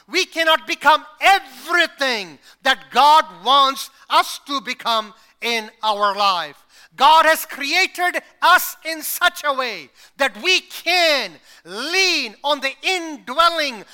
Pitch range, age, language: 260-340 Hz, 50-69, English